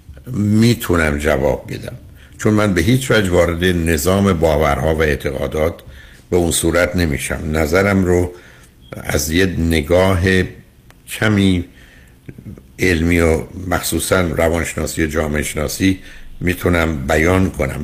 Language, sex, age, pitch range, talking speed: Persian, male, 60-79, 80-95 Hz, 110 wpm